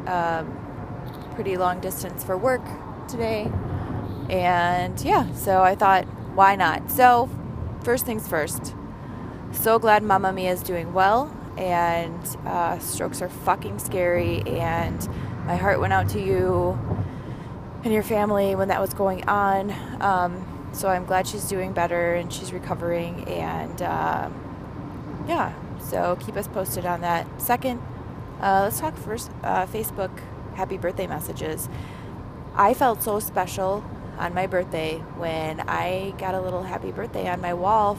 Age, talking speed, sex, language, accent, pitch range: 20-39, 145 wpm, female, English, American, 170-205 Hz